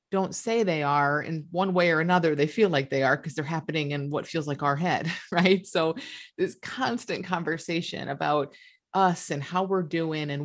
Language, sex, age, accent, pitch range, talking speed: English, female, 30-49, American, 150-190 Hz, 200 wpm